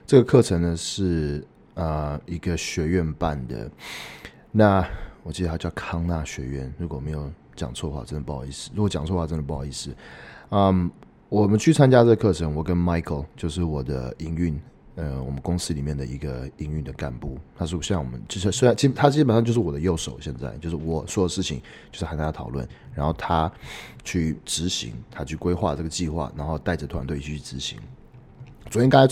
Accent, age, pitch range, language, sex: native, 30-49, 75-100 Hz, Chinese, male